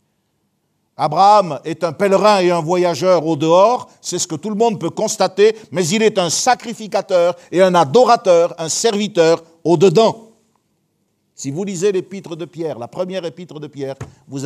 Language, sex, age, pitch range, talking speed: French, male, 60-79, 175-220 Hz, 165 wpm